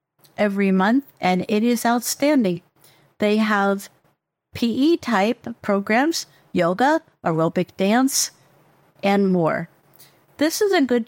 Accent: American